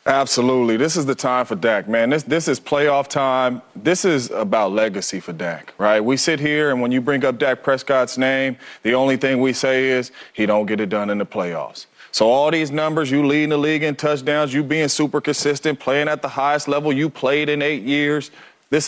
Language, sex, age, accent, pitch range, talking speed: English, male, 30-49, American, 135-195 Hz, 220 wpm